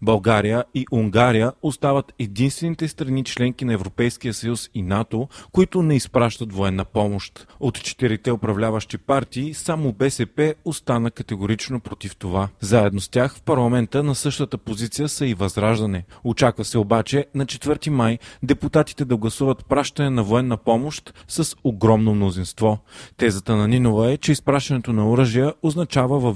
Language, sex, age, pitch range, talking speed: Bulgarian, male, 30-49, 110-135 Hz, 145 wpm